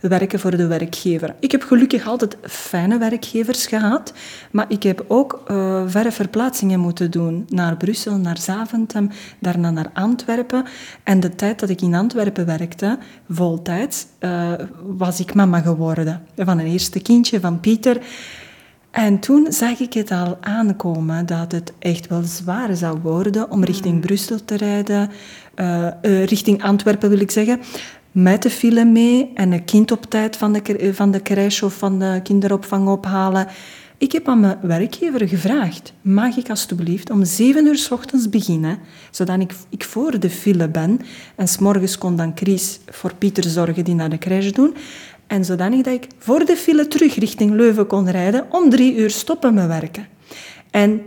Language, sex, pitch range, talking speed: Dutch, female, 180-230 Hz, 170 wpm